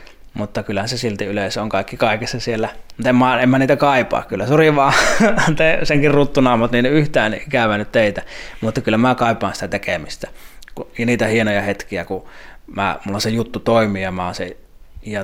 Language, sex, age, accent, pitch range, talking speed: Finnish, male, 20-39, native, 105-130 Hz, 180 wpm